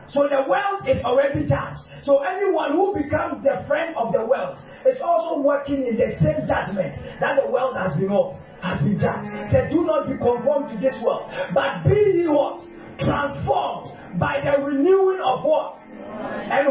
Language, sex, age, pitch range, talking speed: English, male, 40-59, 260-315 Hz, 175 wpm